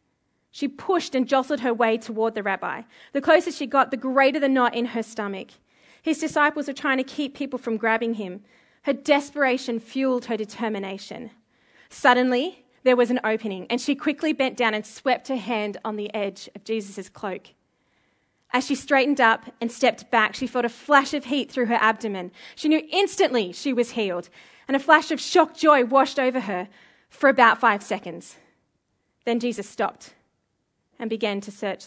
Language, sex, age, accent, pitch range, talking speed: English, female, 20-39, Australian, 215-280 Hz, 185 wpm